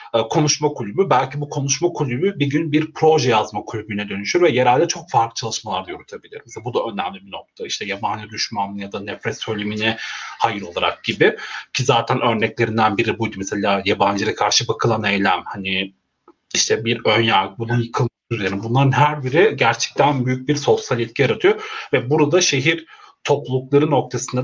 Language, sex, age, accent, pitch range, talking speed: Turkish, male, 40-59, native, 115-150 Hz, 165 wpm